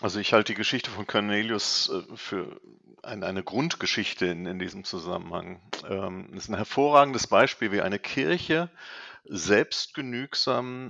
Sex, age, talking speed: male, 50-69, 120 wpm